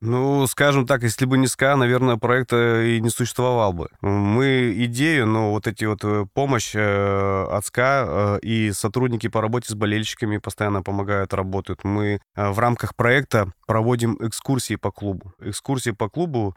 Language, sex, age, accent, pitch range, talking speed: Russian, male, 20-39, native, 100-115 Hz, 150 wpm